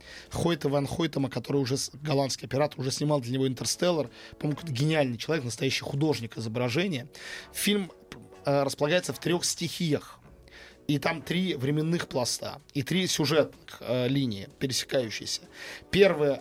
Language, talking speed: Russian, 130 wpm